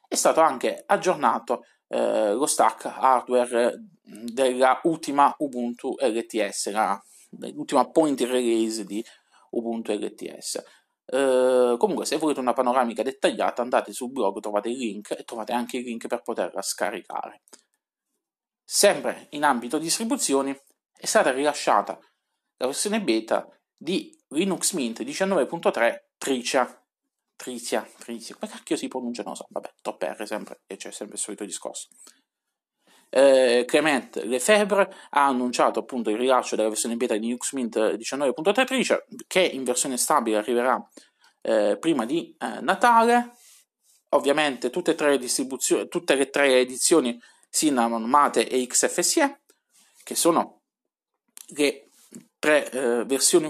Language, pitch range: Italian, 120-200 Hz